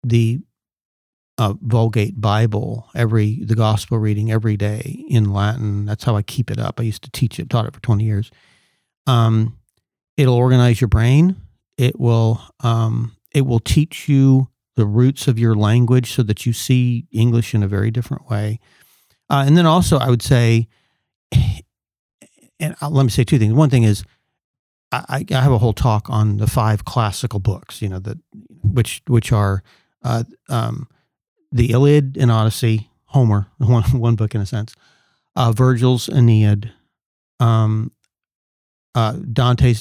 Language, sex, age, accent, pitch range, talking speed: English, male, 40-59, American, 110-130 Hz, 160 wpm